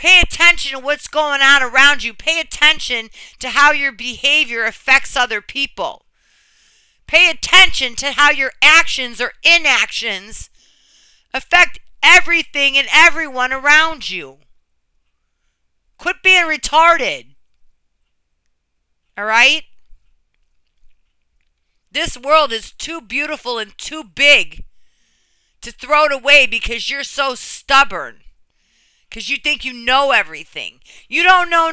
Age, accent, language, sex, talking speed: 50-69, American, English, female, 115 wpm